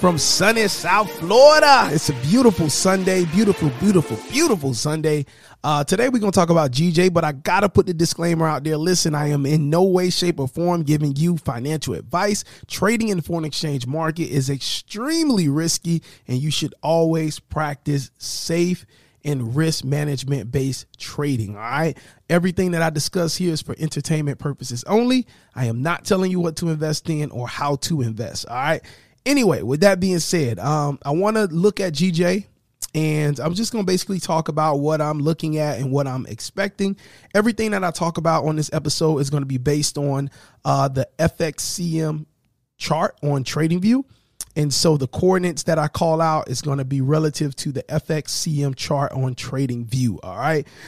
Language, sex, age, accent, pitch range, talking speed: English, male, 30-49, American, 140-175 Hz, 185 wpm